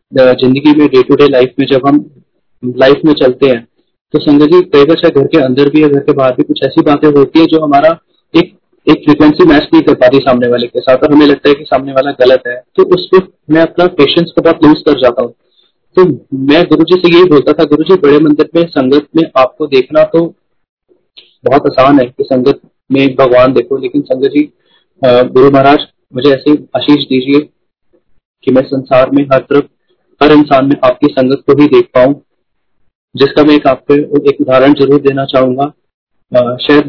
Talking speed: 140 wpm